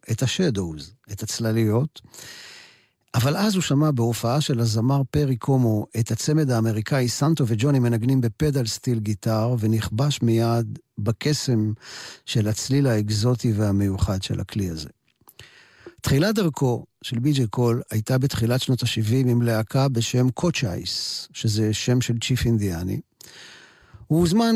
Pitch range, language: 115-150 Hz, Hebrew